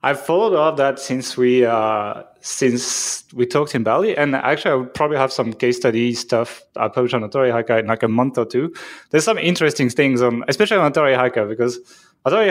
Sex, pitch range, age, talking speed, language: male, 120-150 Hz, 20-39, 215 wpm, English